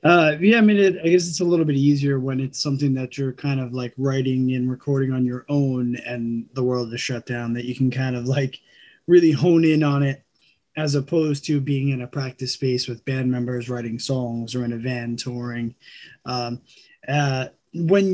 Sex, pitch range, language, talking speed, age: male, 130-165 Hz, English, 210 wpm, 20-39